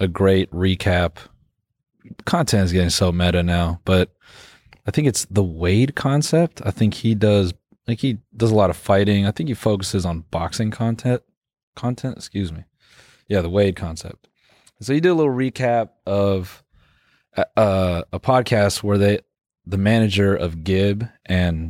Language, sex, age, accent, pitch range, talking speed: English, male, 20-39, American, 90-115 Hz, 165 wpm